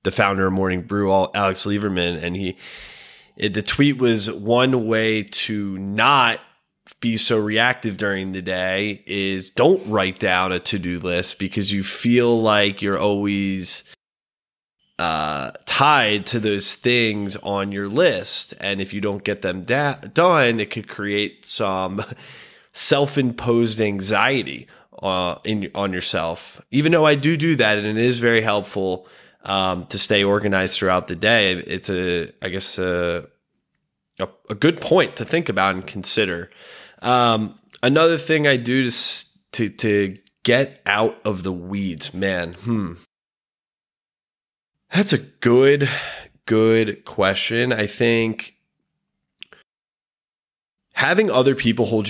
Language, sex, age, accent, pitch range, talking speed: English, male, 20-39, American, 95-115 Hz, 135 wpm